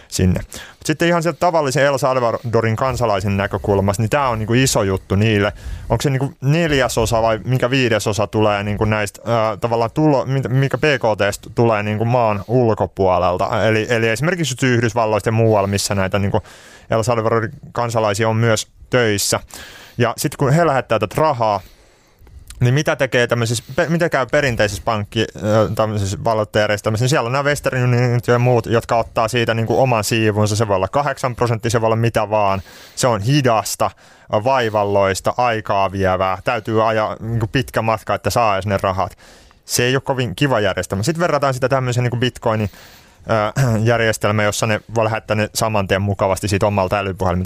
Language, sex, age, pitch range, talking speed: Finnish, male, 30-49, 105-125 Hz, 160 wpm